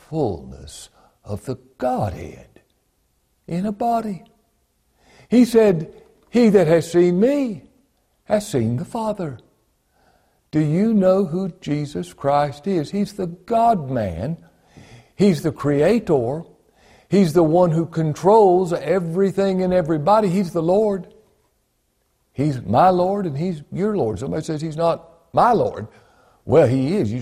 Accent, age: American, 60-79